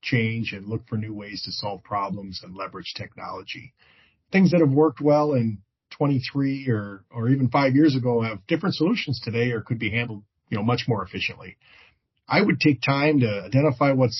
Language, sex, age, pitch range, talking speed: English, male, 40-59, 120-155 Hz, 190 wpm